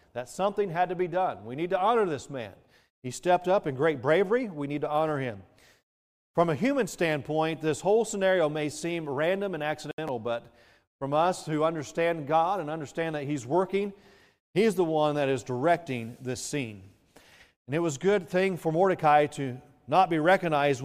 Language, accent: English, American